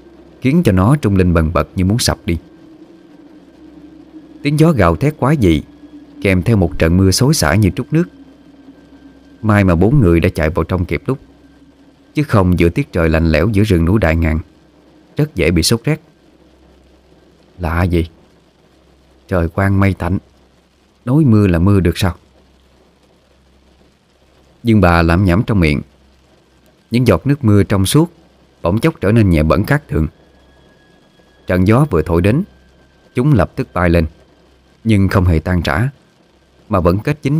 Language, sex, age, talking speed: Vietnamese, male, 20-39, 170 wpm